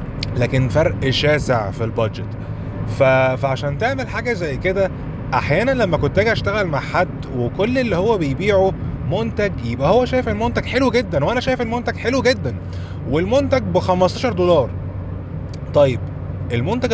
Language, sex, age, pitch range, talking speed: Arabic, male, 20-39, 115-165 Hz, 140 wpm